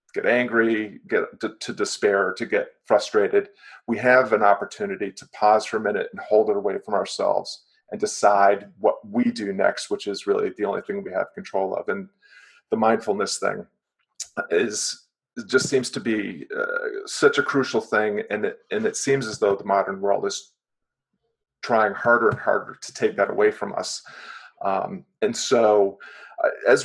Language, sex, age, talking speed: English, male, 40-59, 175 wpm